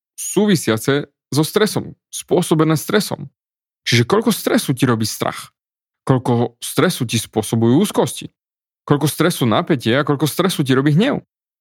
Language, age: Slovak, 30-49